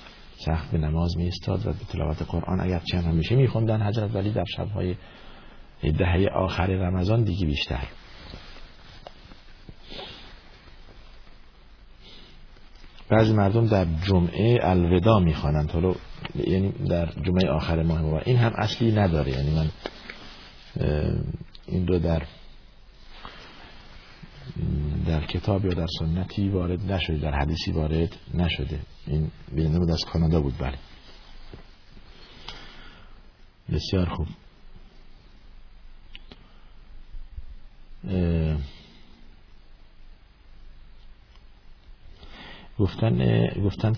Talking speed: 90 wpm